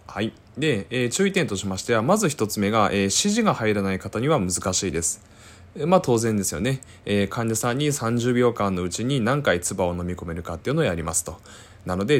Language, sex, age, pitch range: Japanese, male, 20-39, 95-140 Hz